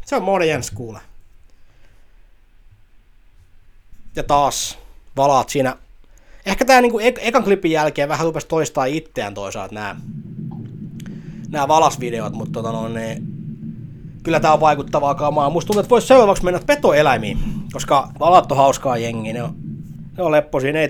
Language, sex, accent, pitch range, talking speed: Finnish, male, native, 135-175 Hz, 125 wpm